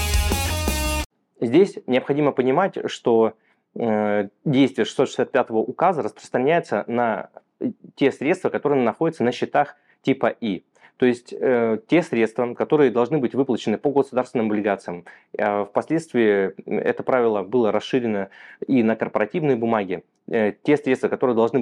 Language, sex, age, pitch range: Russian, male, 20-39, 110-140 Hz